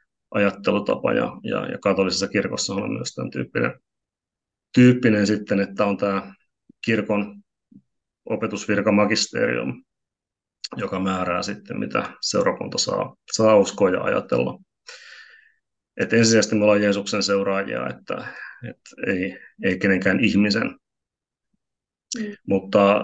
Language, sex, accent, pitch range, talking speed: Finnish, male, native, 100-110 Hz, 105 wpm